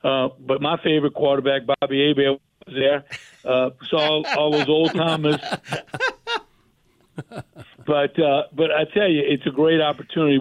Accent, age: American, 50-69